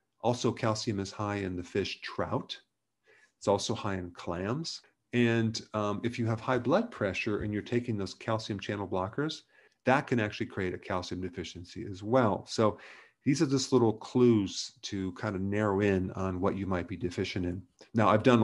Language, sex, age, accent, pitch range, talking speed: English, male, 40-59, American, 95-120 Hz, 190 wpm